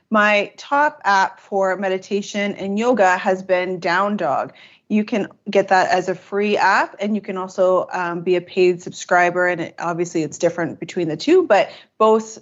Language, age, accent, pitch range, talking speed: English, 30-49, American, 175-200 Hz, 185 wpm